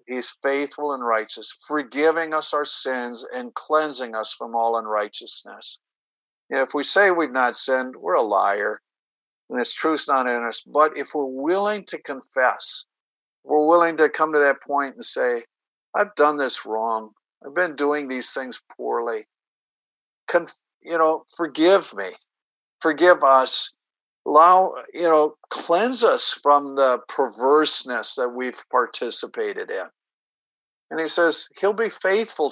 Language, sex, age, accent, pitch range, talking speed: English, male, 50-69, American, 130-170 Hz, 140 wpm